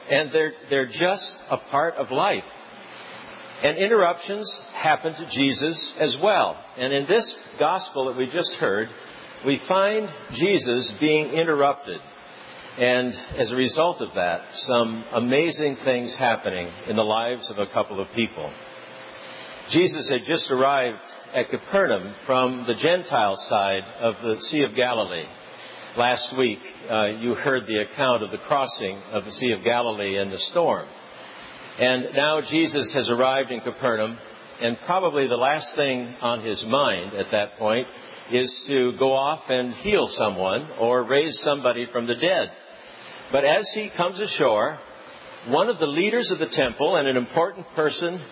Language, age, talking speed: English, 60-79, 155 wpm